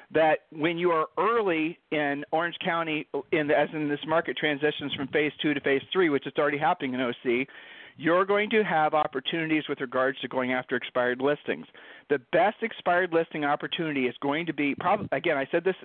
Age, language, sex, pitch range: 40-59, English, male, 140-175 Hz